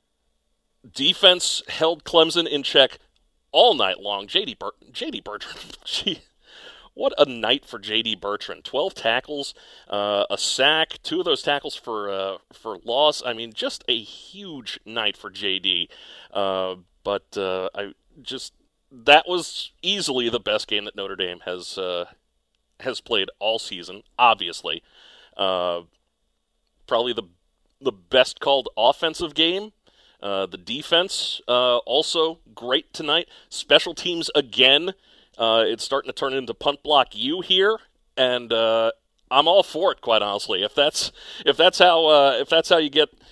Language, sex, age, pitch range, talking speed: English, male, 40-59, 105-170 Hz, 150 wpm